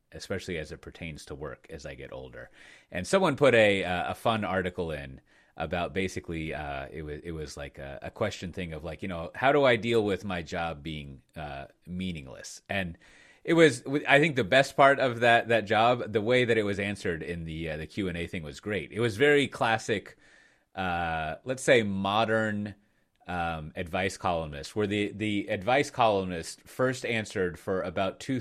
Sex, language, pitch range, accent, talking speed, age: male, English, 80-115 Hz, American, 195 wpm, 30-49